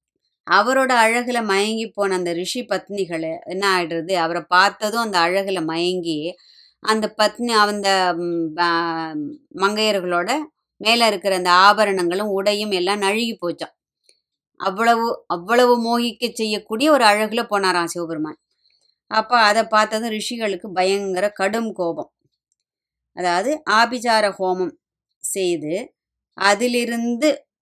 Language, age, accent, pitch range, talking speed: Tamil, 20-39, native, 185-235 Hz, 100 wpm